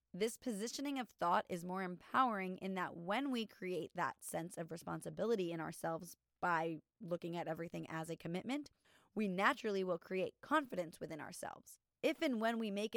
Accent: American